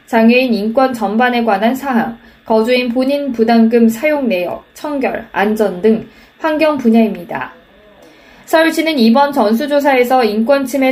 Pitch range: 220-265 Hz